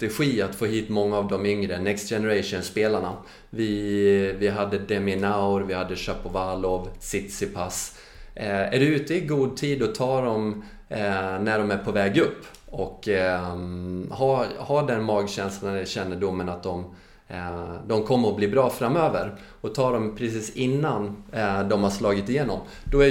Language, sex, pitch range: Swedish, male, 100-130 Hz